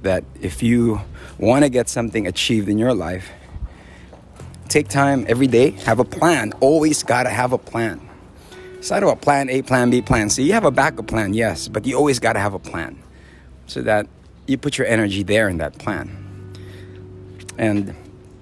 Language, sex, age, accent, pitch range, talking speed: English, male, 30-49, American, 95-125 Hz, 180 wpm